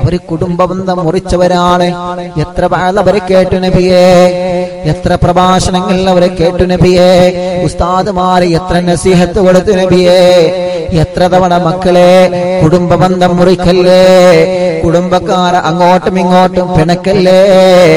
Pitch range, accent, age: 175-185 Hz, native, 20-39